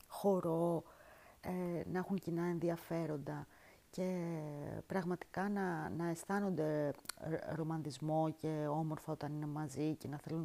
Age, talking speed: 30-49, 115 wpm